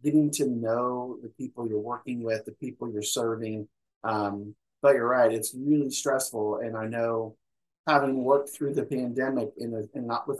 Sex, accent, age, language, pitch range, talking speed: male, American, 30-49, English, 115-150 Hz, 185 wpm